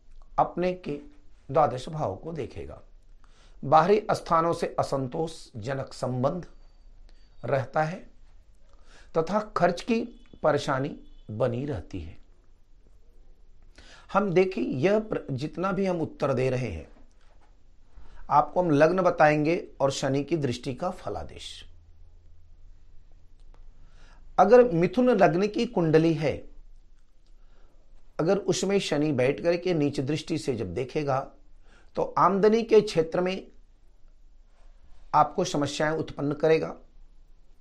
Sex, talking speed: male, 105 wpm